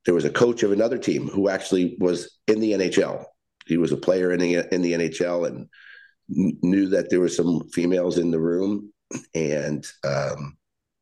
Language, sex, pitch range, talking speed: English, male, 80-110 Hz, 185 wpm